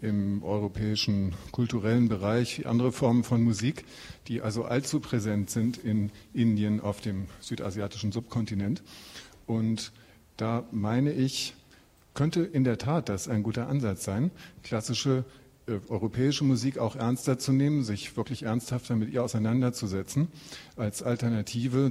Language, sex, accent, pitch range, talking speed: German, male, German, 105-125 Hz, 130 wpm